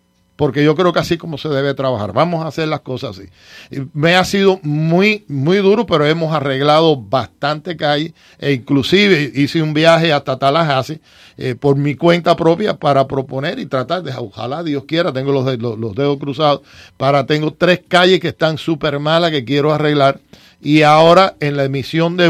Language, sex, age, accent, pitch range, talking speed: English, male, 50-69, American, 135-170 Hz, 185 wpm